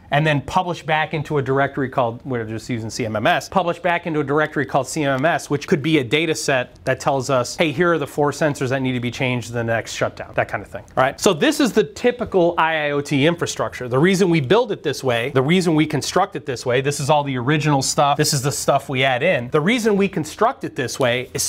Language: English